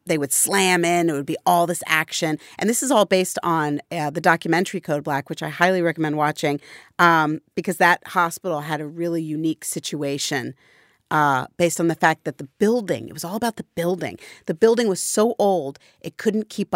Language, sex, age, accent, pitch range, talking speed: English, female, 40-59, American, 155-195 Hz, 205 wpm